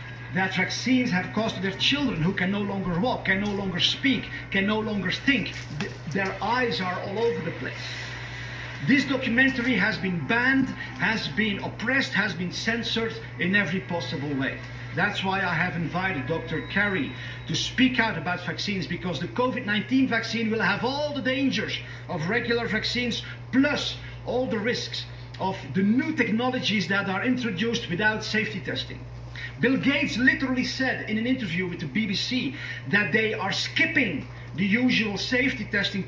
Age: 50-69